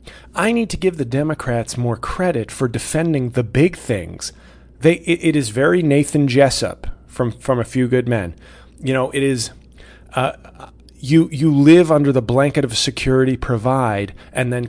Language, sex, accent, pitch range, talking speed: English, male, American, 110-155 Hz, 170 wpm